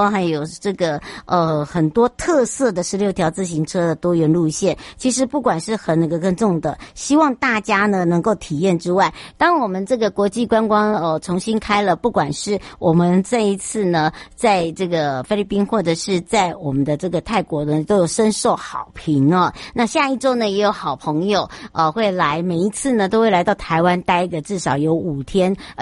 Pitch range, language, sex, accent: 170-220 Hz, Chinese, male, American